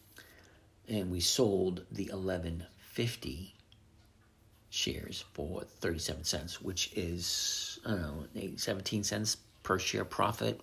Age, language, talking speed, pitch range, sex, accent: 60-79, English, 95 wpm, 85-105 Hz, male, American